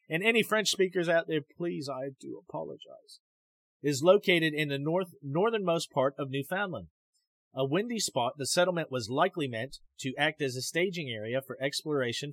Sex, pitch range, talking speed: male, 120-170 Hz, 170 wpm